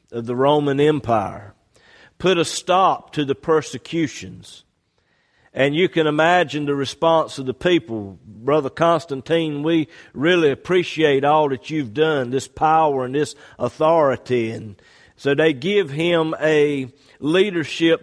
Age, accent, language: 50-69, American, English